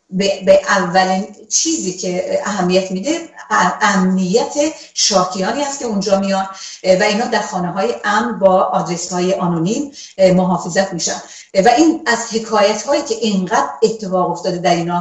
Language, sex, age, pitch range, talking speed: Persian, female, 40-59, 180-210 Hz, 140 wpm